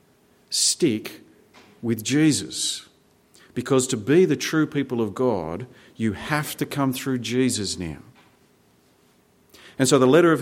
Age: 40-59